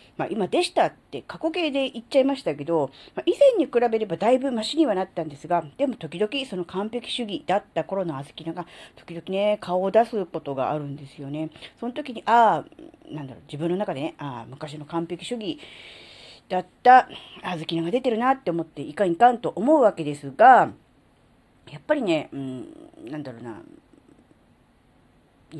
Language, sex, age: Japanese, female, 40-59